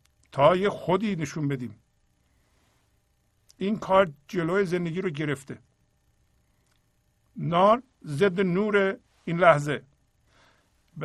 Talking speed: 90 wpm